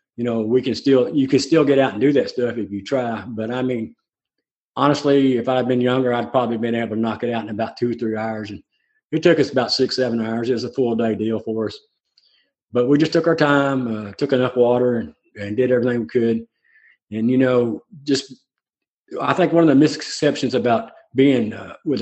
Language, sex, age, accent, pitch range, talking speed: English, male, 40-59, American, 110-135 Hz, 230 wpm